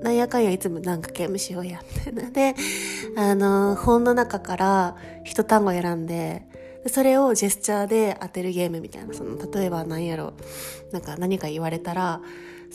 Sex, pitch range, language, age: female, 180-240 Hz, Japanese, 20-39